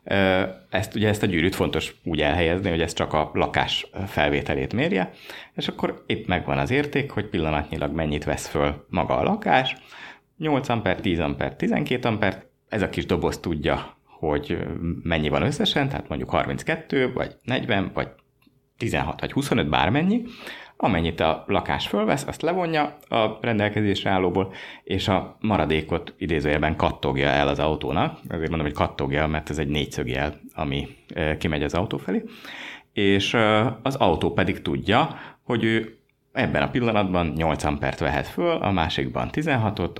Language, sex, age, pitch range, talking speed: Hungarian, male, 30-49, 75-105 Hz, 150 wpm